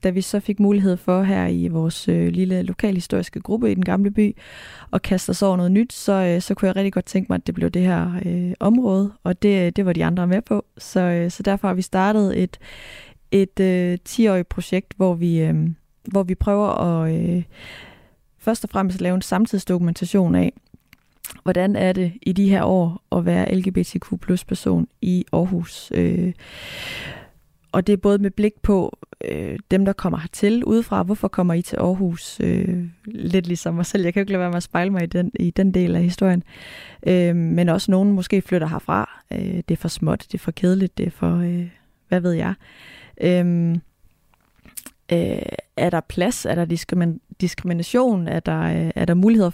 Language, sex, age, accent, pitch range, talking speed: Danish, female, 20-39, native, 170-200 Hz, 190 wpm